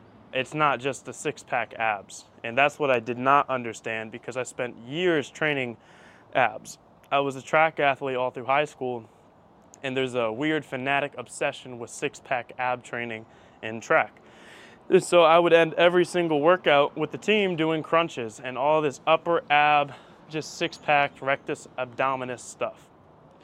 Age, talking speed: 20-39, 165 wpm